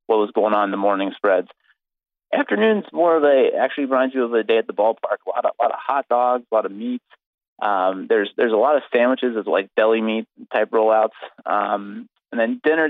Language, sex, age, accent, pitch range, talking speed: English, male, 30-49, American, 105-130 Hz, 230 wpm